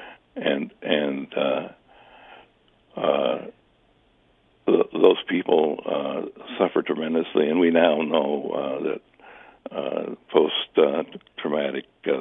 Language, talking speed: English, 100 wpm